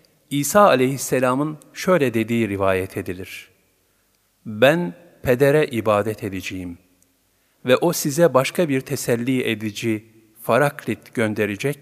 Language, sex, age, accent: Turkish, male, 50-69, native